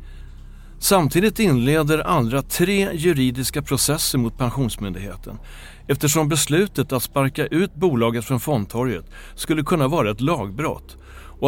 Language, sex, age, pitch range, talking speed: Swedish, male, 60-79, 100-145 Hz, 115 wpm